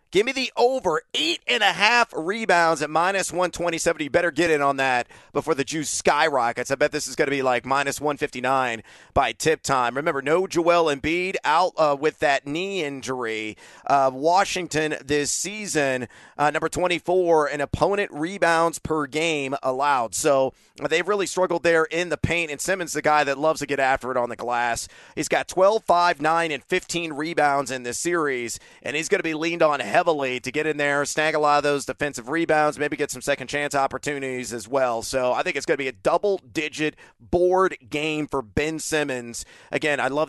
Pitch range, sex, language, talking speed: 135-175 Hz, male, English, 200 wpm